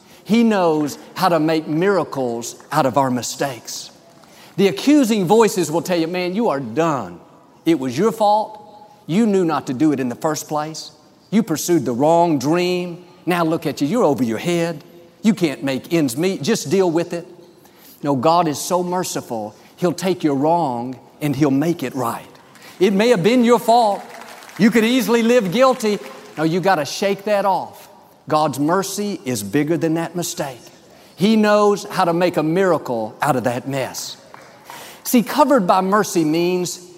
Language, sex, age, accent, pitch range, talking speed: English, male, 50-69, American, 150-200 Hz, 180 wpm